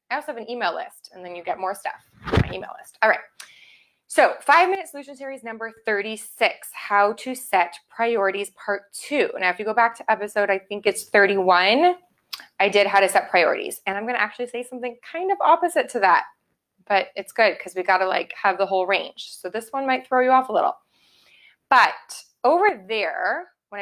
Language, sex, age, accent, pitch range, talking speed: English, female, 20-39, American, 195-255 Hz, 205 wpm